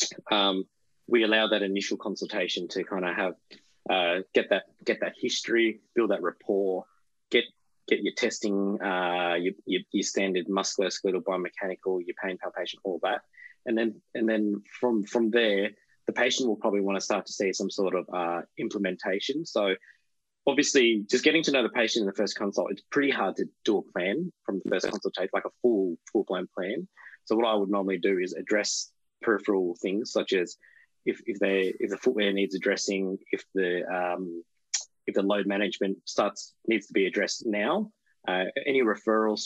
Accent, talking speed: Australian, 180 wpm